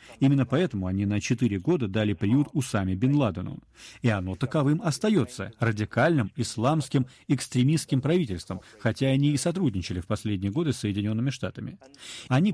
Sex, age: male, 40-59